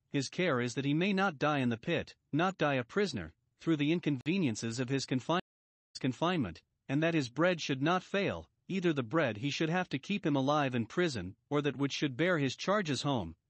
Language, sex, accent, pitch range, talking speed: English, male, American, 130-180 Hz, 220 wpm